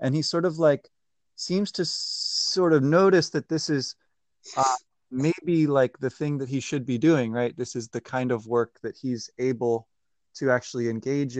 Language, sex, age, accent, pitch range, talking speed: English, male, 20-39, American, 120-145 Hz, 190 wpm